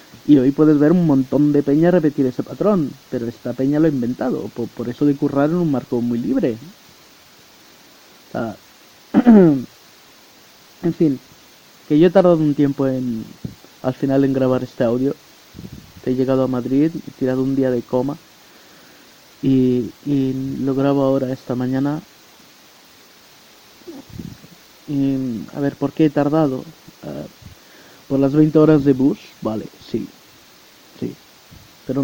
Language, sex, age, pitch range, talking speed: Spanish, male, 30-49, 125-150 Hz, 145 wpm